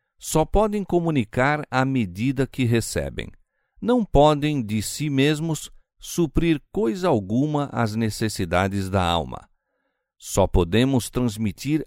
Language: Portuguese